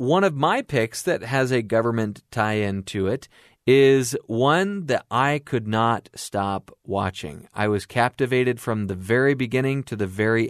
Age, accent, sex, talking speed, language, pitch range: 30-49, American, male, 165 wpm, English, 110-140 Hz